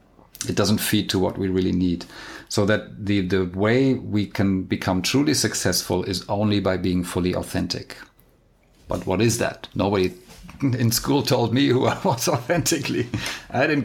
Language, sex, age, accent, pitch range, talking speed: English, male, 50-69, German, 95-110 Hz, 170 wpm